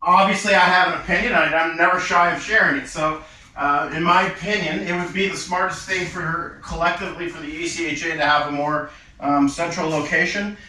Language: English